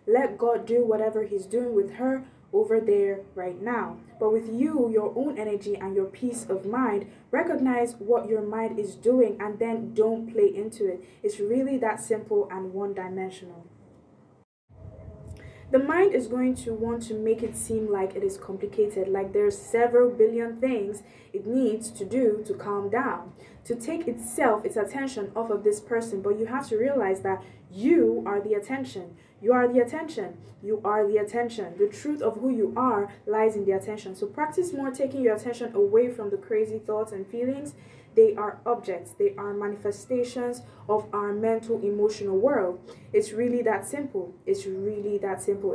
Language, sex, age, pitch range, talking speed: English, female, 20-39, 200-245 Hz, 180 wpm